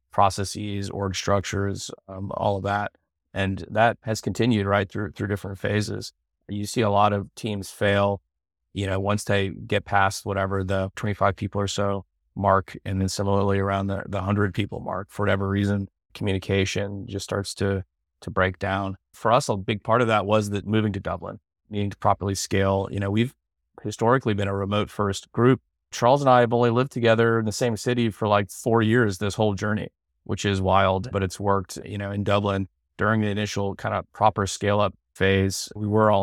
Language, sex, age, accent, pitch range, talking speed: English, male, 30-49, American, 95-105 Hz, 200 wpm